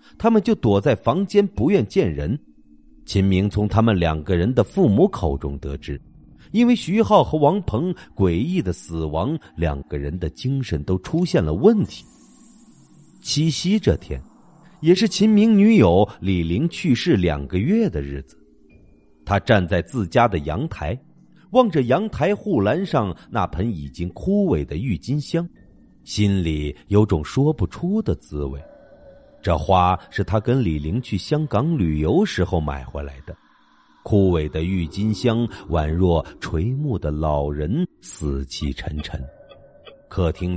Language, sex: Chinese, male